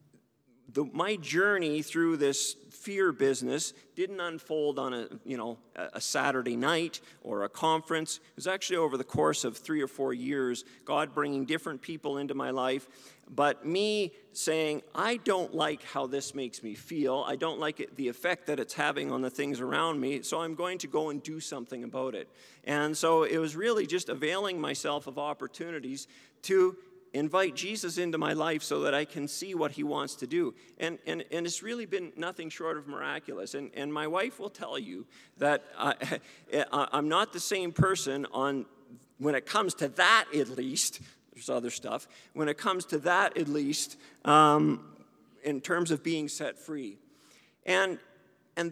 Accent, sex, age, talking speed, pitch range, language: American, male, 40-59, 180 wpm, 140-180 Hz, English